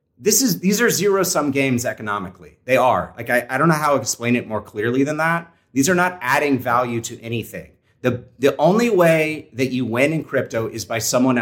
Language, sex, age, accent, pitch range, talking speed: English, male, 30-49, American, 115-150 Hz, 215 wpm